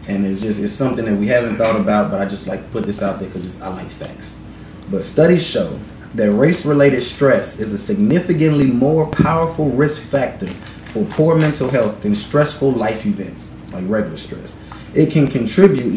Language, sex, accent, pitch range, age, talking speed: English, male, American, 105-145 Hz, 20-39, 190 wpm